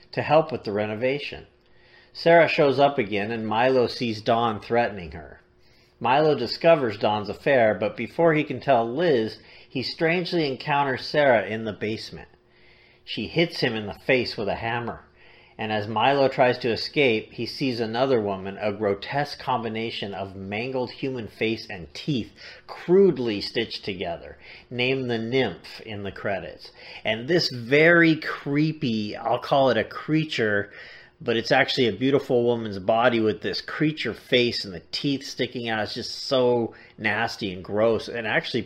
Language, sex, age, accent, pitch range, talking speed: English, male, 50-69, American, 105-140 Hz, 160 wpm